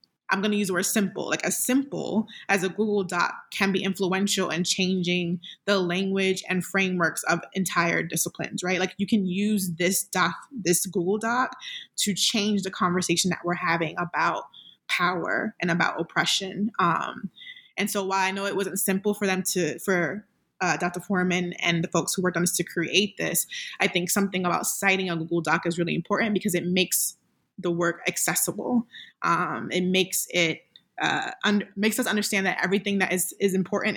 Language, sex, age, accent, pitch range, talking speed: English, female, 20-39, American, 180-210 Hz, 185 wpm